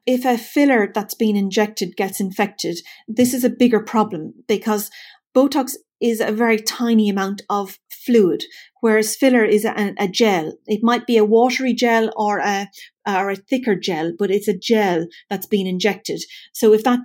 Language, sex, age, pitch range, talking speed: English, female, 40-59, 195-230 Hz, 175 wpm